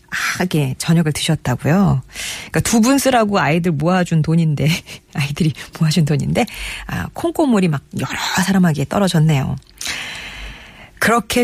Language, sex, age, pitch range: Korean, female, 40-59, 150-205 Hz